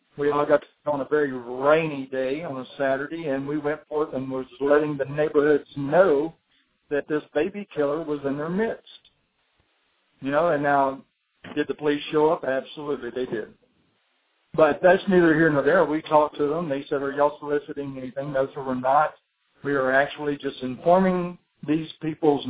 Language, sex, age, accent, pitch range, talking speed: English, male, 60-79, American, 135-155 Hz, 180 wpm